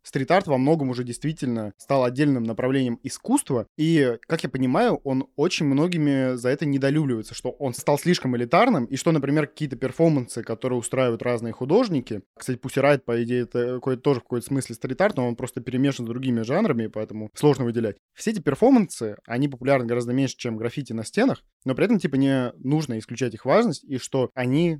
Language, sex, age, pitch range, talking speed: Russian, male, 20-39, 120-145 Hz, 185 wpm